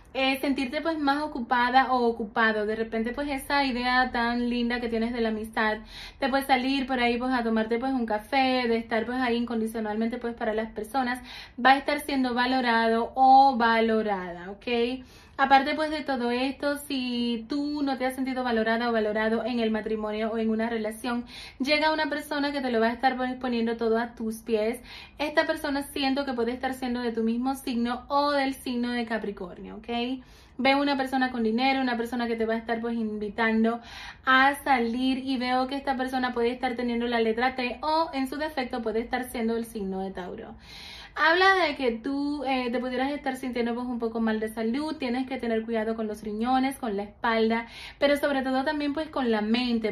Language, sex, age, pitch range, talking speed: Spanish, female, 30-49, 230-270 Hz, 205 wpm